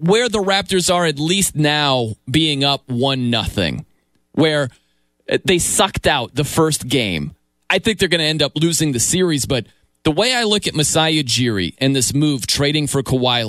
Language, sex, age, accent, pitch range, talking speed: English, male, 30-49, American, 125-180 Hz, 185 wpm